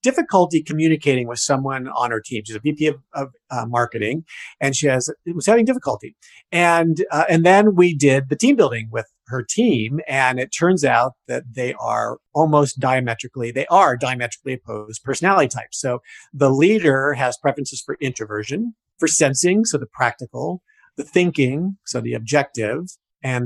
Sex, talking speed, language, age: male, 170 wpm, English, 50-69